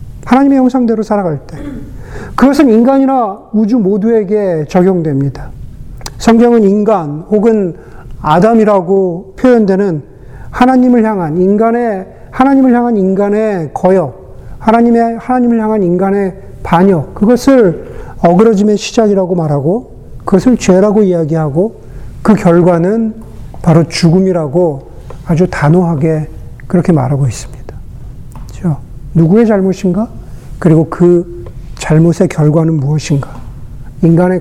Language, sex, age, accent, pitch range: Korean, male, 40-59, native, 155-215 Hz